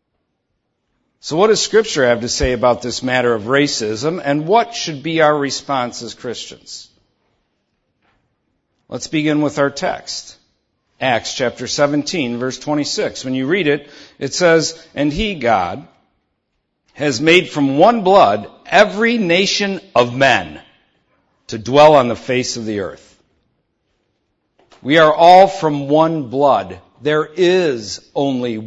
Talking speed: 135 wpm